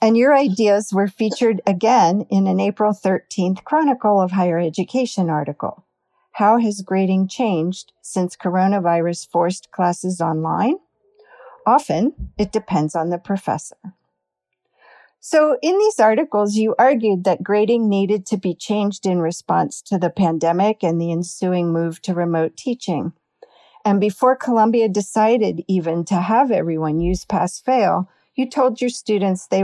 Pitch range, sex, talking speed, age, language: 170-220 Hz, female, 140 wpm, 50-69, English